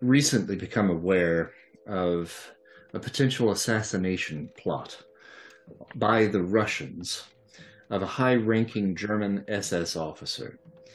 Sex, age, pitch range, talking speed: male, 40-59, 90-120 Hz, 95 wpm